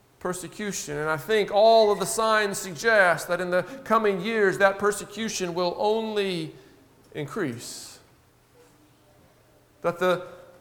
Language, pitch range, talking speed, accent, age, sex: English, 175-225 Hz, 120 wpm, American, 50-69, male